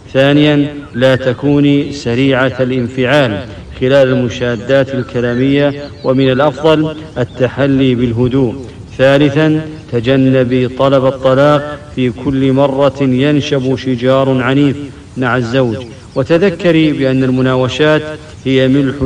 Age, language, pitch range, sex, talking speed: 50-69, English, 125-140 Hz, male, 90 wpm